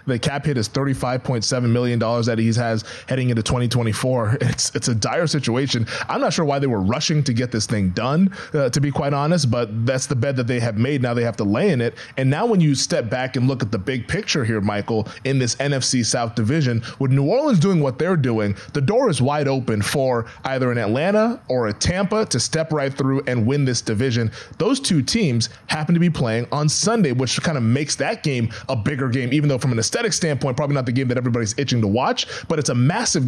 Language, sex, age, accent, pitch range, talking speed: English, male, 20-39, American, 120-155 Hz, 235 wpm